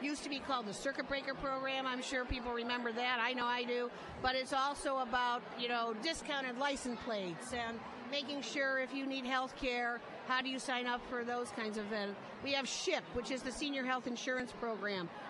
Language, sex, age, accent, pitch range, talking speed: English, female, 50-69, American, 240-280 Hz, 210 wpm